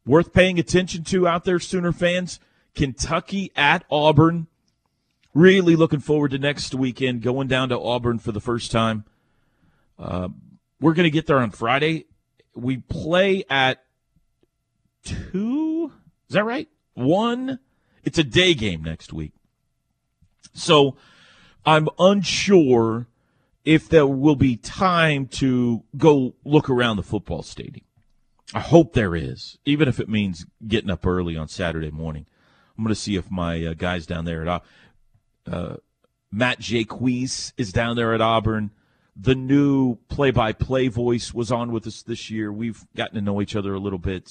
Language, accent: English, American